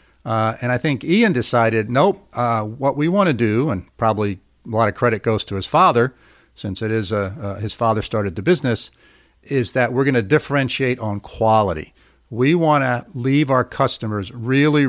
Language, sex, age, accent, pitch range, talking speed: English, male, 50-69, American, 105-140 Hz, 195 wpm